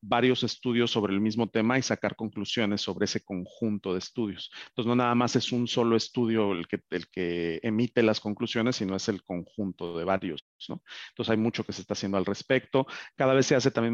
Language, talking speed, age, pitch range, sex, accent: Spanish, 205 wpm, 40-59, 100-120 Hz, male, Mexican